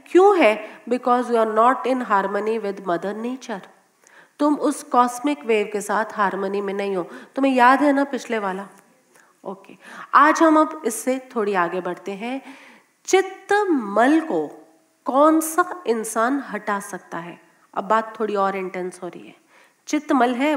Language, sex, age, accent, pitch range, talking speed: Hindi, female, 40-59, native, 225-310 Hz, 165 wpm